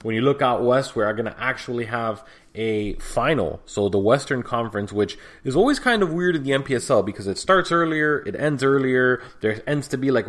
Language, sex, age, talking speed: English, male, 30-49, 215 wpm